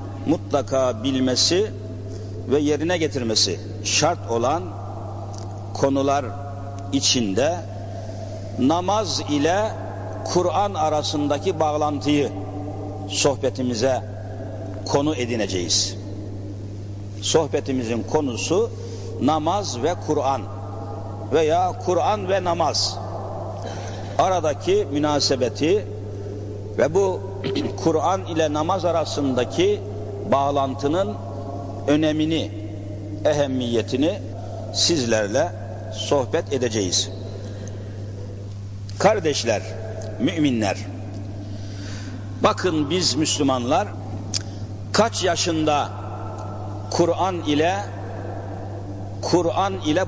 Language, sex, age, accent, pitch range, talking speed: Turkish, male, 60-79, native, 100-125 Hz, 60 wpm